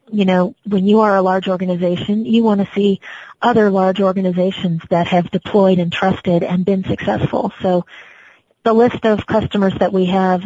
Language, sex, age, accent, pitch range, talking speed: English, female, 40-59, American, 180-215 Hz, 180 wpm